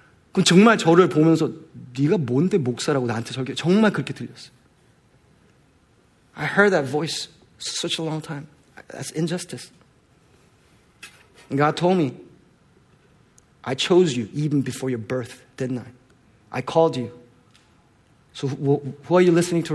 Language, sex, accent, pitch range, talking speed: English, male, Korean, 125-160 Hz, 135 wpm